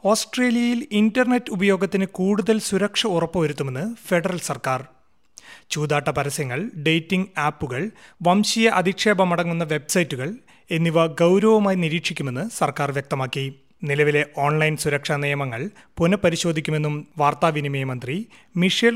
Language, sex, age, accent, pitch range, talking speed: Malayalam, male, 30-49, native, 145-190 Hz, 90 wpm